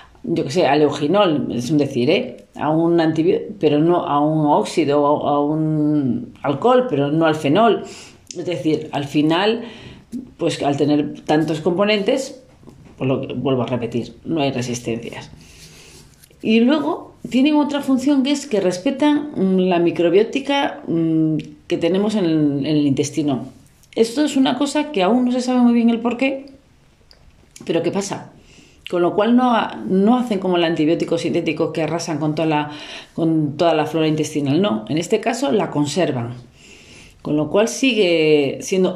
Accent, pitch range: Spanish, 145-215 Hz